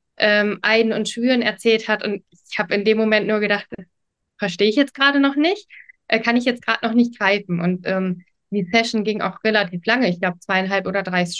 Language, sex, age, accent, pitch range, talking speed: German, female, 20-39, German, 195-225 Hz, 220 wpm